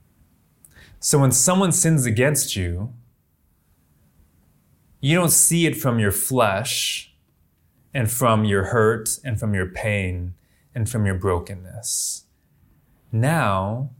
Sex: male